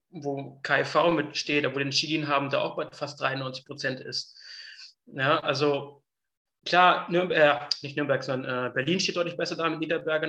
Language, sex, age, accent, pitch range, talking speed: German, male, 20-39, German, 140-155 Hz, 175 wpm